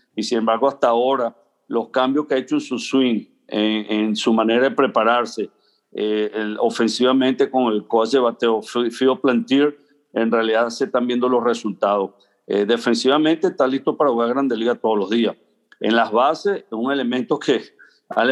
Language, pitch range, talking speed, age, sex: English, 115-135 Hz, 175 wpm, 50-69, male